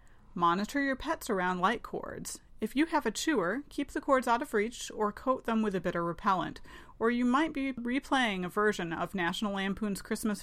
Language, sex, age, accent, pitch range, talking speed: English, female, 30-49, American, 180-255 Hz, 200 wpm